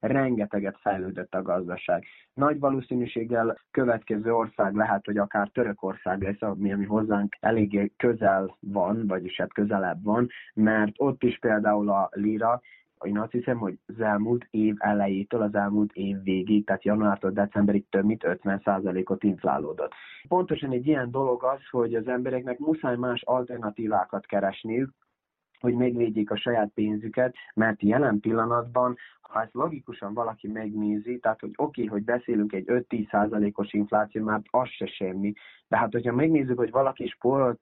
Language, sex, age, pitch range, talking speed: Hungarian, male, 30-49, 105-120 Hz, 150 wpm